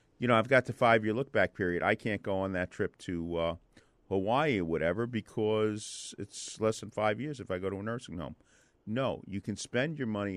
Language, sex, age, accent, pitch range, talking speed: English, male, 50-69, American, 90-110 Hz, 220 wpm